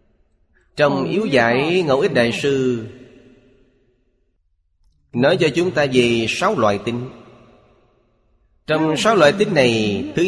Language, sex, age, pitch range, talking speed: Vietnamese, male, 30-49, 90-130 Hz, 125 wpm